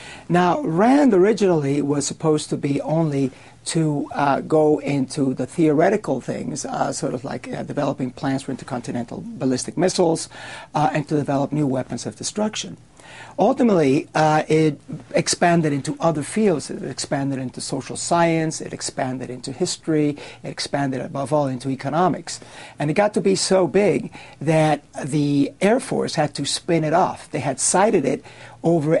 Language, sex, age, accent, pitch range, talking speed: English, male, 60-79, American, 135-170 Hz, 160 wpm